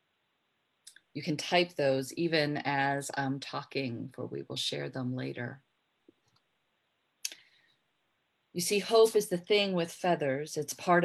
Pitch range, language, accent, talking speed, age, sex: 150-175 Hz, English, American, 130 wpm, 40-59, female